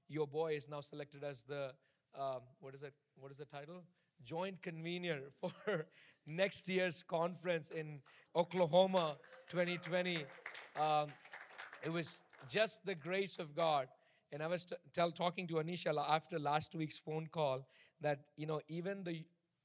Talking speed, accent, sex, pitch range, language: 155 wpm, Indian, male, 155-180 Hz, English